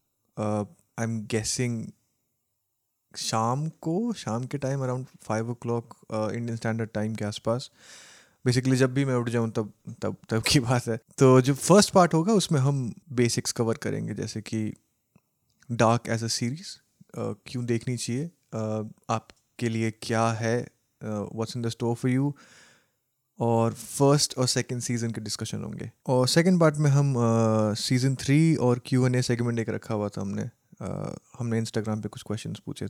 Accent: native